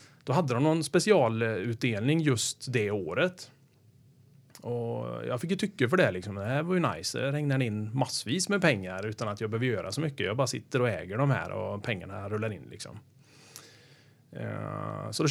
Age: 30-49